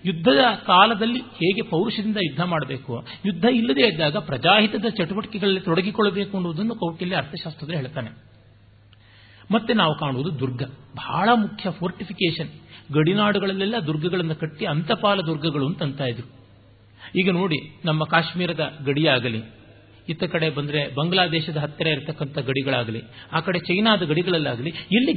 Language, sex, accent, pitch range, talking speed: Kannada, male, native, 140-205 Hz, 115 wpm